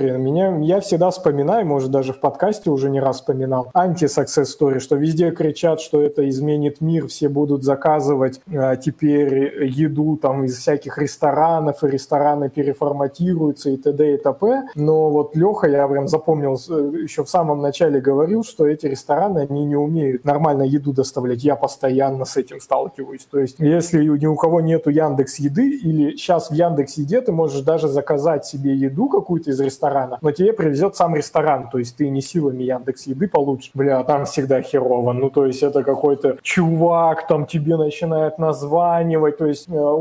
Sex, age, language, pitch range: male, 20-39, Russian, 140-170 Hz